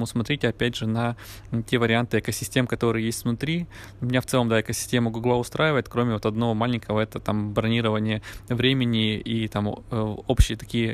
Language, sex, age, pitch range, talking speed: Russian, male, 20-39, 110-120 Hz, 165 wpm